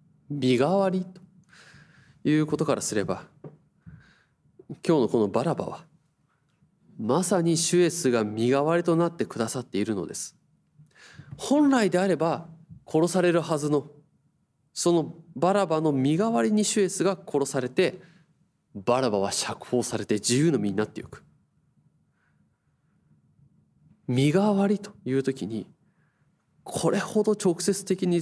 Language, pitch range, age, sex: Japanese, 140-180 Hz, 20-39, male